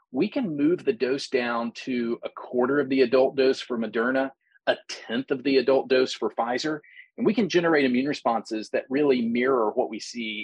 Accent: American